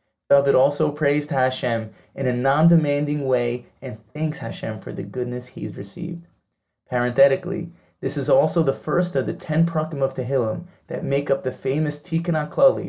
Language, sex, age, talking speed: English, male, 20-39, 165 wpm